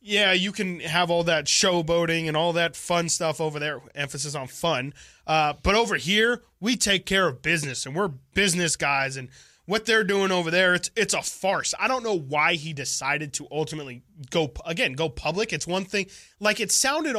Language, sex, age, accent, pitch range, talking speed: English, male, 20-39, American, 145-185 Hz, 205 wpm